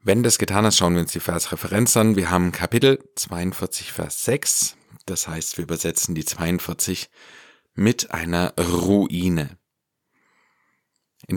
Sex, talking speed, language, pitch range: male, 135 wpm, German, 85-100 Hz